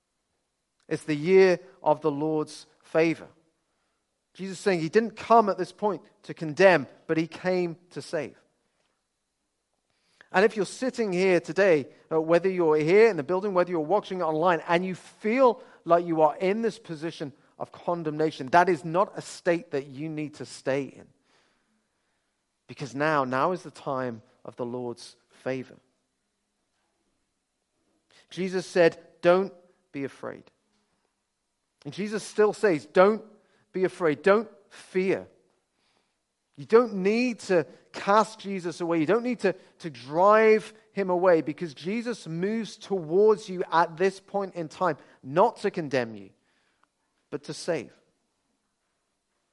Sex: male